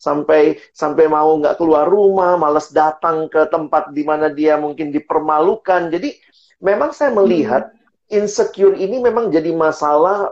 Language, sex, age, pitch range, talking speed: Indonesian, male, 40-59, 150-230 Hz, 135 wpm